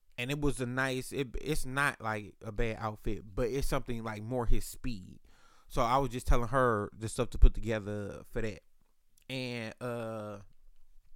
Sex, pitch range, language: male, 105-130 Hz, English